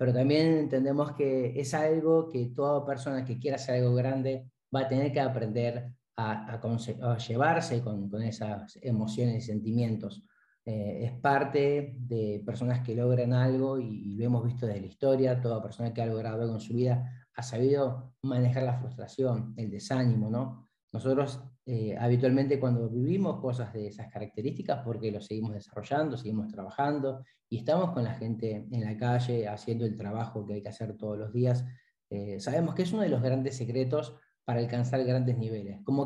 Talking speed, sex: 185 wpm, male